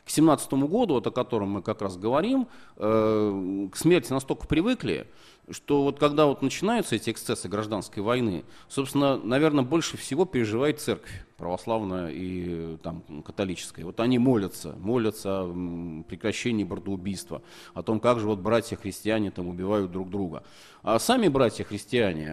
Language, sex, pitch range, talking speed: Russian, male, 90-120 Hz, 145 wpm